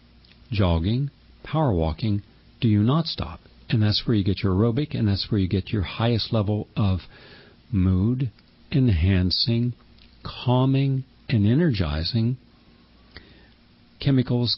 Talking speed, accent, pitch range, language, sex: 120 wpm, American, 95-125 Hz, English, male